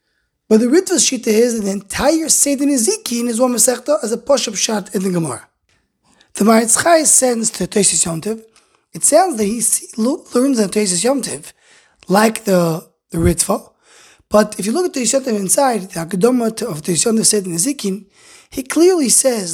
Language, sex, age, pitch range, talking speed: English, male, 20-39, 195-265 Hz, 180 wpm